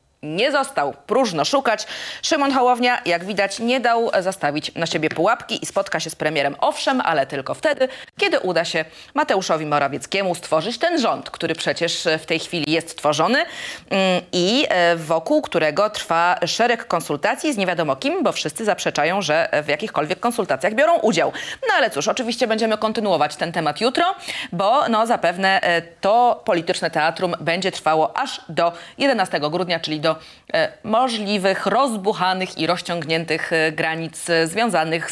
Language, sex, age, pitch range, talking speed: Polish, female, 30-49, 165-245 Hz, 150 wpm